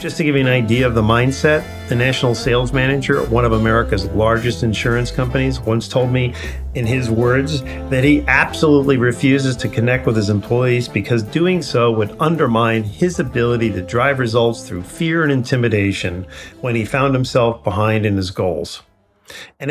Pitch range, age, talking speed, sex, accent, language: 110-140 Hz, 40-59, 175 wpm, male, American, English